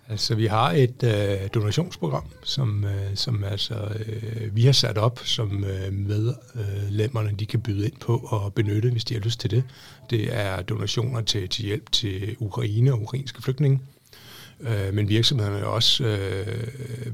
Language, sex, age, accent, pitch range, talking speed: Danish, male, 60-79, native, 105-125 Hz, 170 wpm